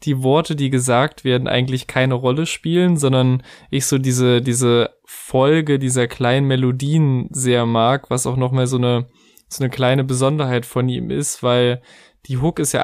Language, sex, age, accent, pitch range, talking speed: German, male, 20-39, German, 130-150 Hz, 180 wpm